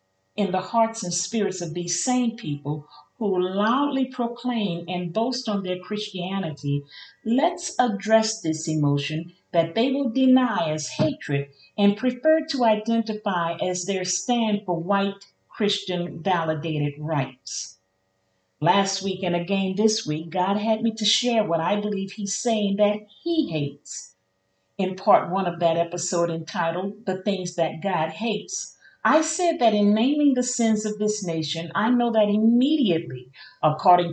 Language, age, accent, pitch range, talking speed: English, 50-69, American, 160-225 Hz, 150 wpm